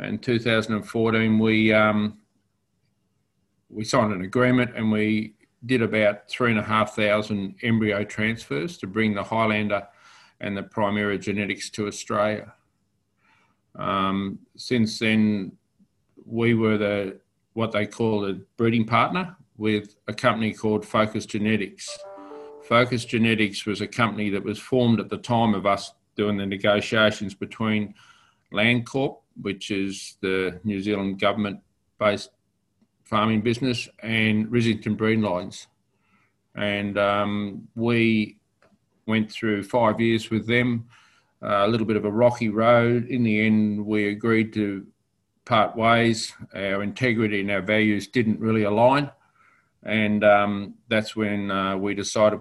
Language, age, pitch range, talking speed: English, 50-69, 100-115 Hz, 130 wpm